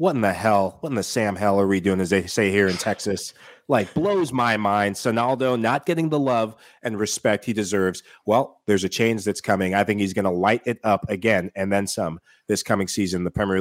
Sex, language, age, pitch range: male, English, 30-49, 100-130 Hz